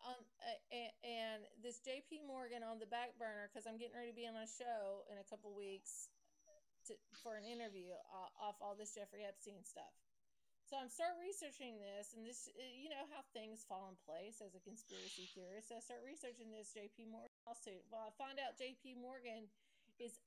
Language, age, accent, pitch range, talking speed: English, 40-59, American, 205-260 Hz, 205 wpm